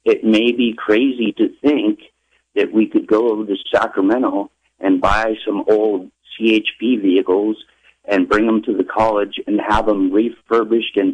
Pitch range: 105-140 Hz